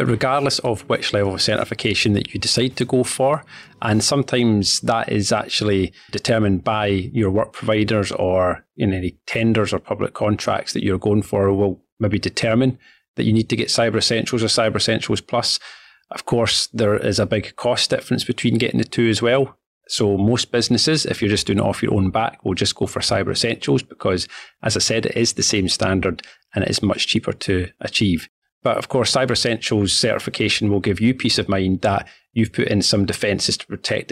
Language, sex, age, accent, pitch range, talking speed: English, male, 30-49, British, 100-120 Hz, 200 wpm